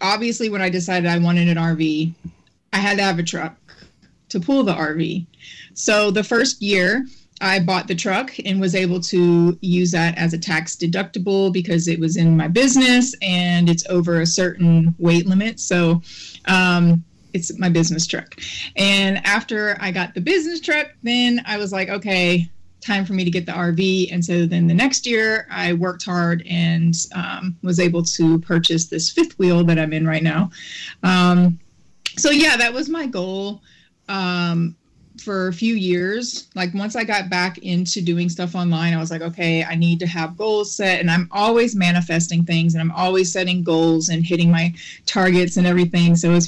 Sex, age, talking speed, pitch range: female, 30-49, 190 wpm, 170-200 Hz